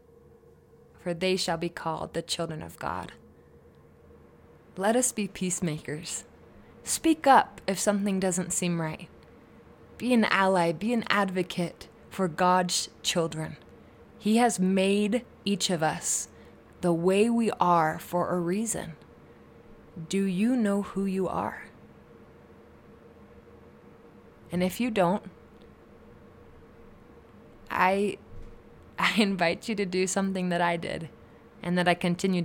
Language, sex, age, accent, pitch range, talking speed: English, female, 20-39, American, 170-200 Hz, 120 wpm